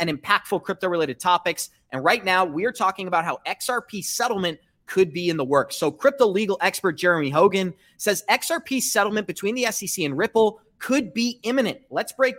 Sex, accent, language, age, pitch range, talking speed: male, American, English, 30-49, 175-225 Hz, 185 wpm